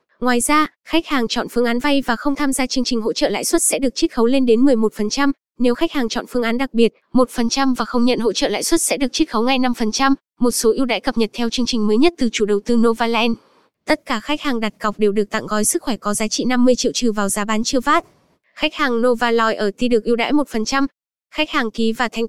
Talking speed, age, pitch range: 265 wpm, 10-29, 225-270 Hz